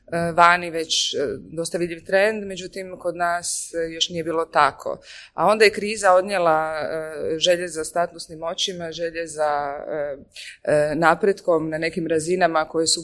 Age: 20-39